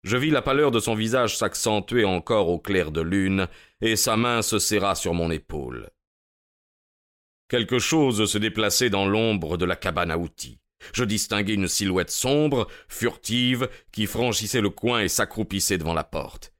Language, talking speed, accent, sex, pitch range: French, 170 wpm, French, male, 90-115 Hz